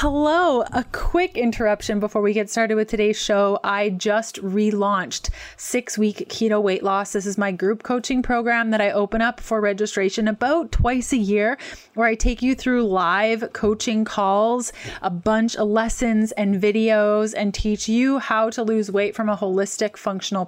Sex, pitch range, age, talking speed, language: female, 205-245 Hz, 20-39, 175 wpm, English